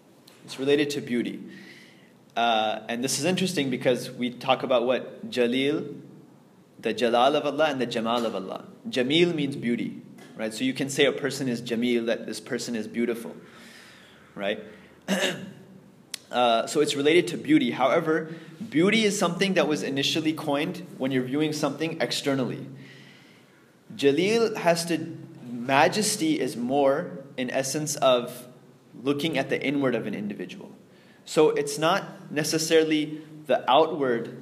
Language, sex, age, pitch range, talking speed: English, male, 20-39, 125-160 Hz, 145 wpm